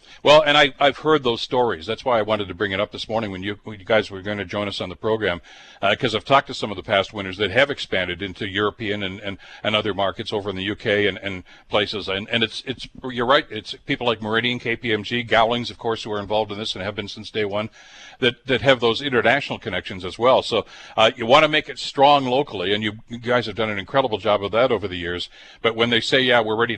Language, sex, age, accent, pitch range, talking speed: English, male, 60-79, American, 105-125 Hz, 270 wpm